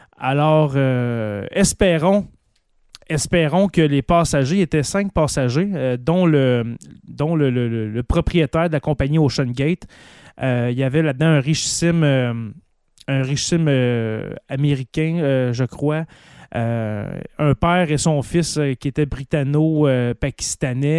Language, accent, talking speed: French, Canadian, 130 wpm